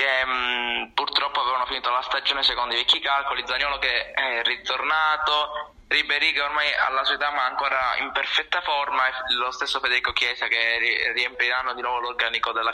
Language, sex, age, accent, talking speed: Italian, male, 20-39, native, 175 wpm